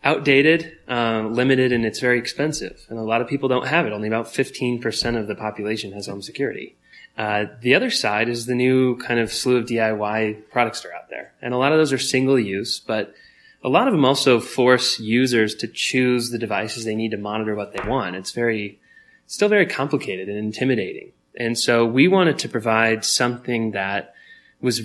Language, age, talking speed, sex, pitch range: English, 20-39, 205 wpm, male, 105-125 Hz